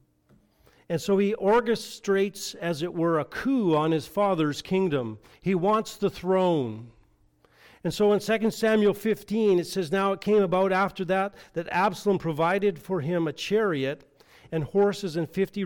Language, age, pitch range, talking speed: English, 40-59, 155-200 Hz, 160 wpm